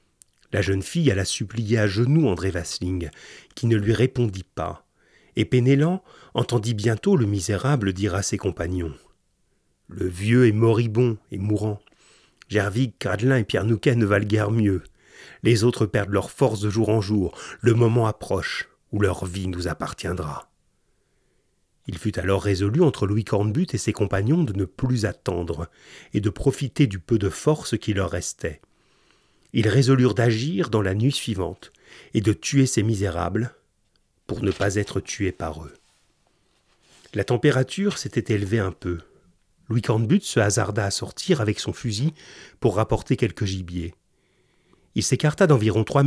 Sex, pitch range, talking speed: male, 100-125 Hz, 160 wpm